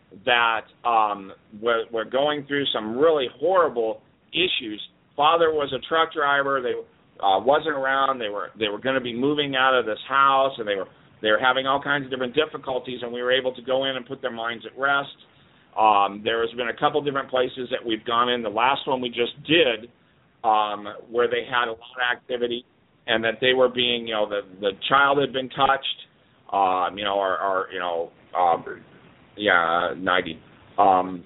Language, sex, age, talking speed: English, male, 50-69, 200 wpm